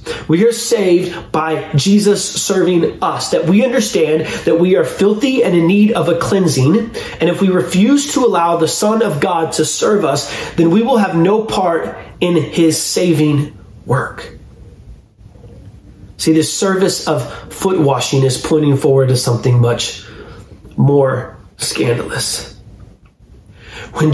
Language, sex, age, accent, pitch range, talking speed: English, male, 30-49, American, 135-200 Hz, 145 wpm